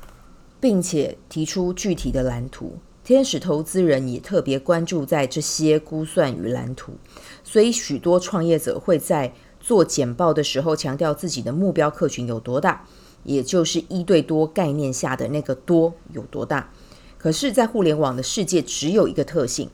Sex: female